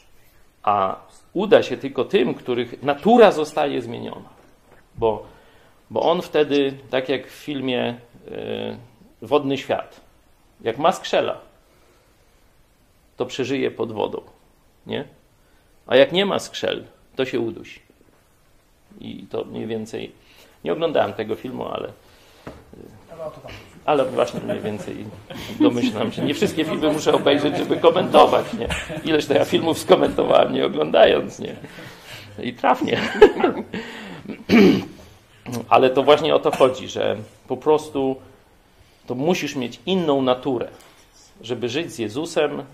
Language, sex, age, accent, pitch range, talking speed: Polish, male, 40-59, native, 115-150 Hz, 120 wpm